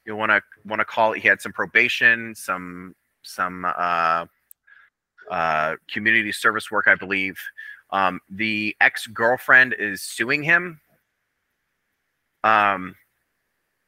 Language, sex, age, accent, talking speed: English, male, 30-49, American, 120 wpm